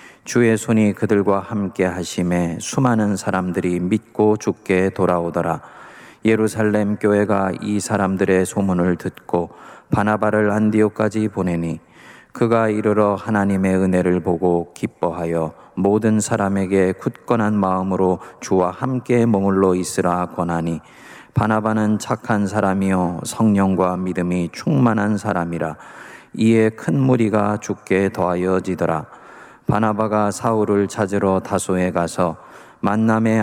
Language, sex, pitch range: Korean, male, 90-110 Hz